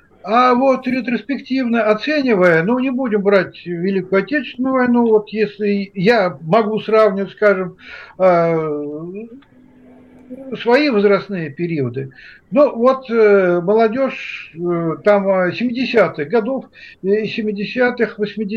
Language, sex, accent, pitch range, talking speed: Russian, male, native, 185-245 Hz, 85 wpm